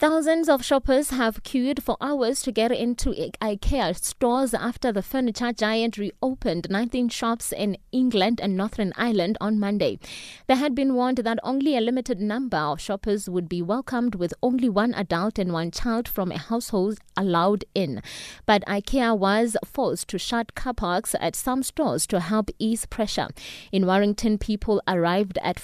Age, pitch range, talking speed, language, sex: 20-39, 185-245 Hz, 170 wpm, English, female